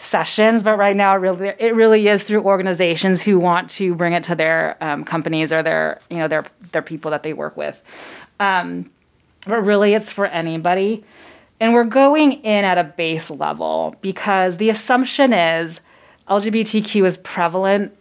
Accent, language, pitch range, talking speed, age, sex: American, English, 165-210 Hz, 170 wpm, 30-49, female